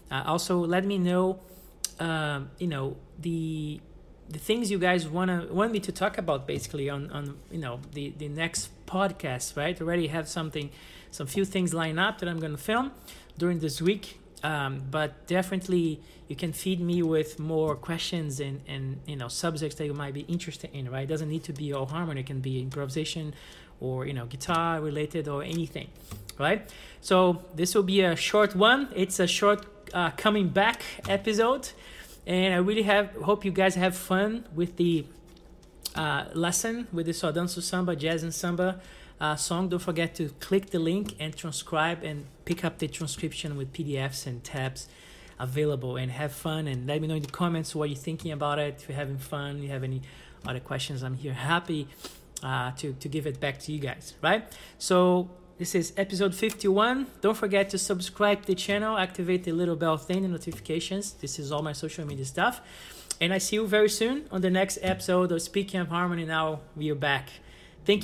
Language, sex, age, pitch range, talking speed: English, male, 40-59, 150-185 Hz, 200 wpm